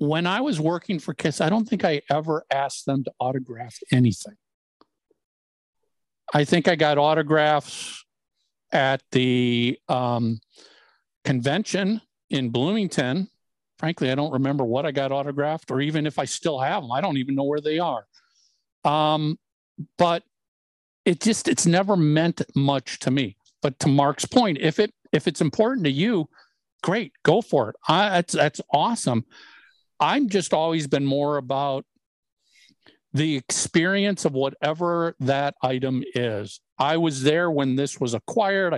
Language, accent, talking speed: English, American, 150 wpm